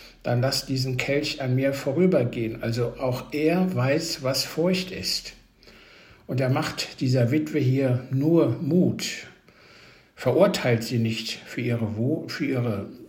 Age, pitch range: 60-79, 120-160 Hz